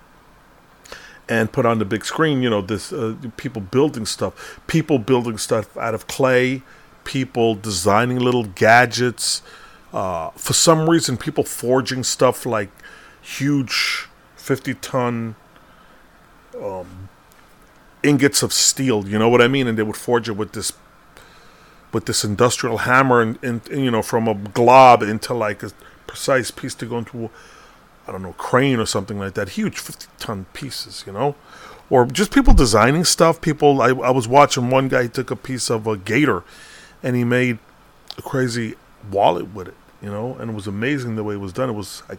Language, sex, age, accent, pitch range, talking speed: English, male, 40-59, American, 110-130 Hz, 175 wpm